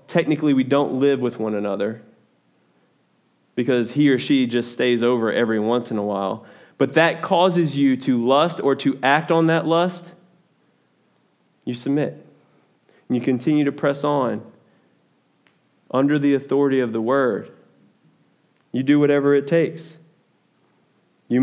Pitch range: 140-185 Hz